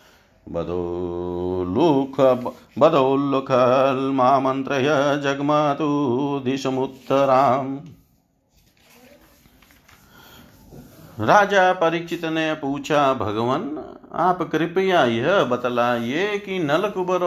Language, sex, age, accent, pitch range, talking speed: Hindi, male, 50-69, native, 120-150 Hz, 60 wpm